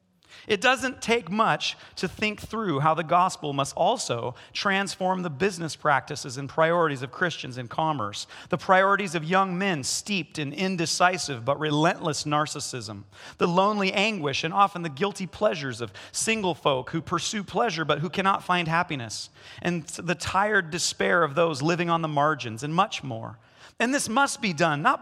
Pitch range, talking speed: 140-195 Hz, 170 wpm